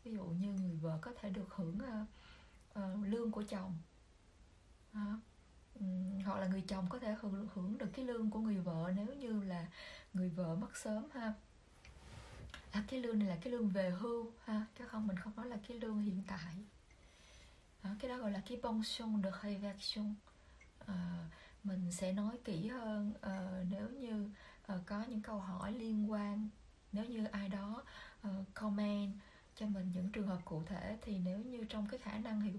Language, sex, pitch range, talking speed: Vietnamese, female, 190-220 Hz, 195 wpm